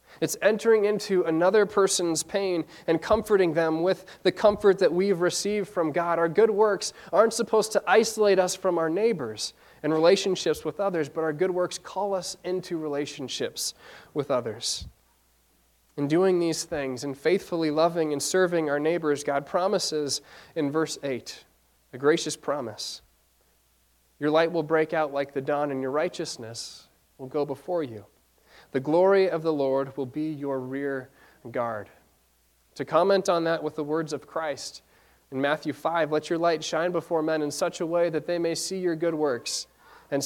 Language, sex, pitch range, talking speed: English, male, 135-180 Hz, 175 wpm